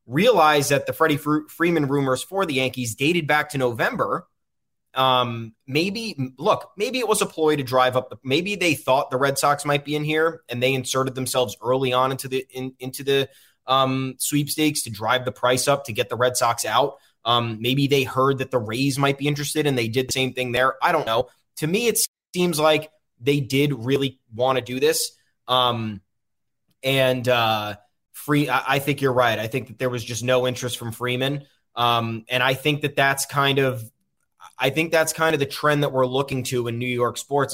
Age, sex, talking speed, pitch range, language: 20-39, male, 210 wpm, 125-165 Hz, English